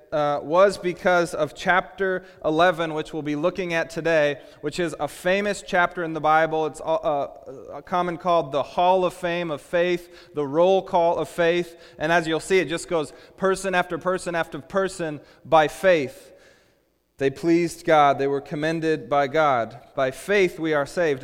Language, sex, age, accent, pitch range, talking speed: English, male, 30-49, American, 150-180 Hz, 180 wpm